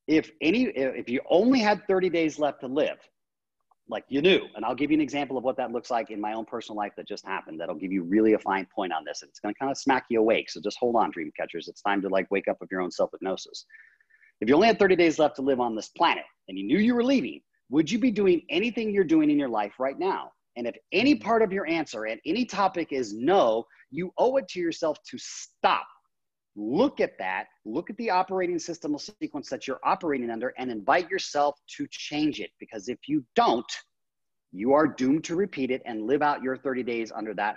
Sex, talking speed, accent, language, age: male, 245 wpm, American, English, 30-49